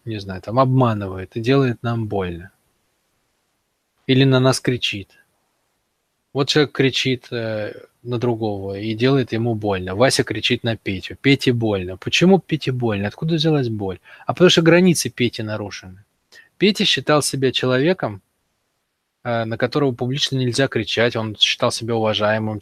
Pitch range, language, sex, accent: 115-145 Hz, Russian, male, native